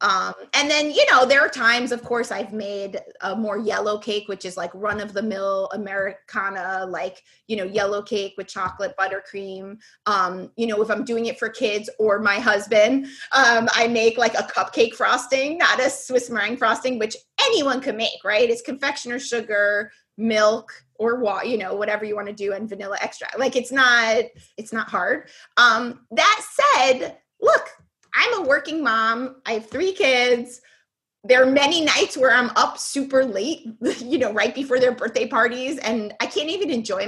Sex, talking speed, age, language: female, 190 wpm, 30-49, English